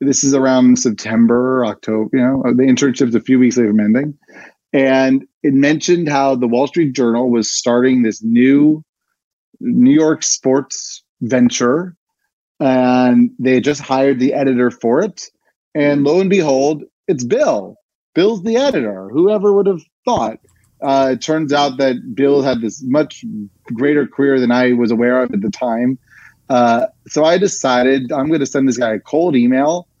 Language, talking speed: English, 170 wpm